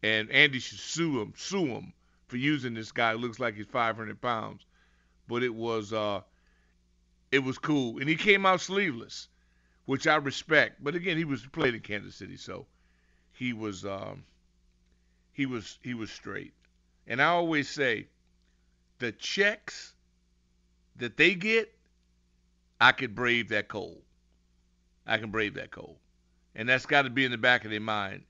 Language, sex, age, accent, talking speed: English, male, 50-69, American, 165 wpm